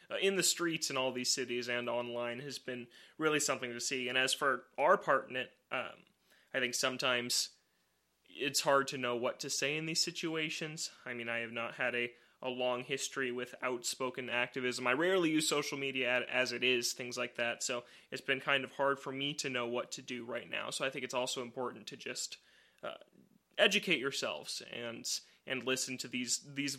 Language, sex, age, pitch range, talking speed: English, male, 20-39, 125-140 Hz, 205 wpm